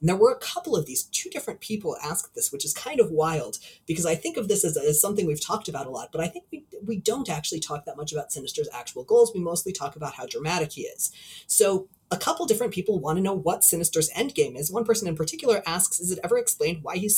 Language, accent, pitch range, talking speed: English, American, 160-220 Hz, 260 wpm